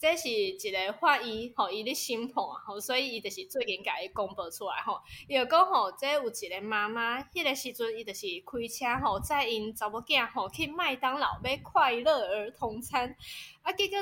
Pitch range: 230-325 Hz